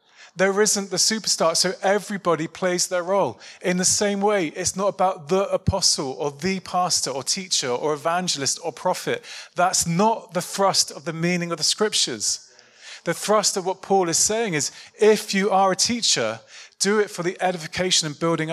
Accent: British